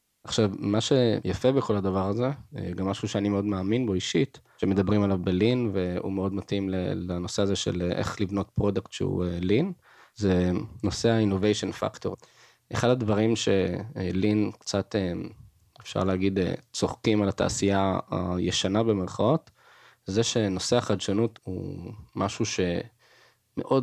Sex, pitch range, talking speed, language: male, 95-115 Hz, 100 wpm, English